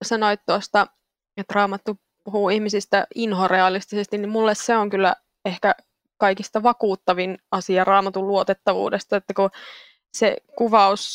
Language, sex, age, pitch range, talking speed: Finnish, female, 20-39, 190-220 Hz, 120 wpm